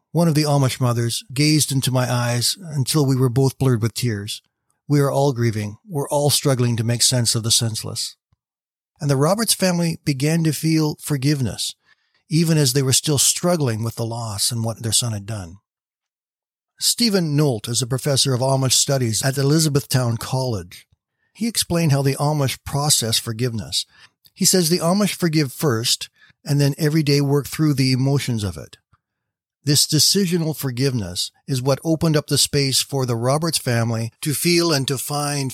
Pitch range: 115-145 Hz